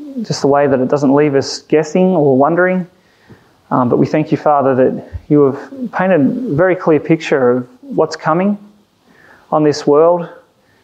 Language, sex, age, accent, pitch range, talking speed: English, male, 30-49, Australian, 135-165 Hz, 170 wpm